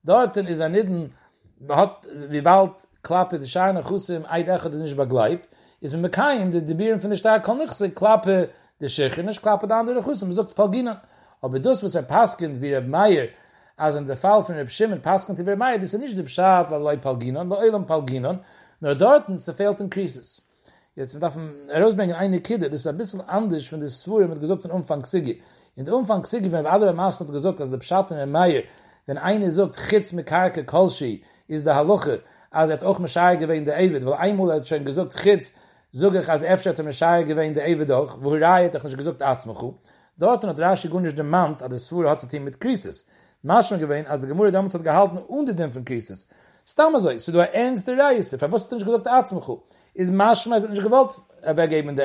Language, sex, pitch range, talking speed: English, male, 155-205 Hz, 85 wpm